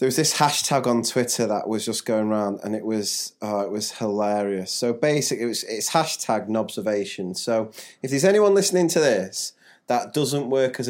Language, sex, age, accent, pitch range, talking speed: English, male, 30-49, British, 105-120 Hz, 180 wpm